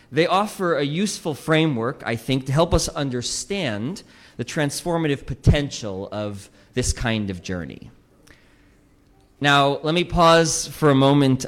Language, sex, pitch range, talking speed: English, male, 110-165 Hz, 135 wpm